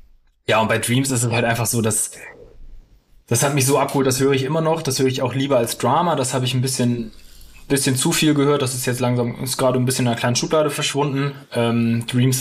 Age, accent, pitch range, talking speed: 20-39, German, 115-130 Hz, 245 wpm